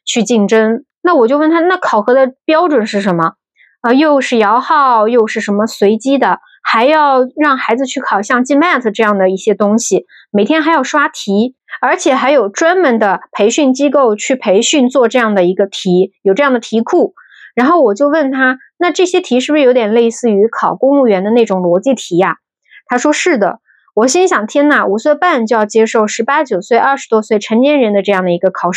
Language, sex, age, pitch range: Chinese, female, 20-39, 210-285 Hz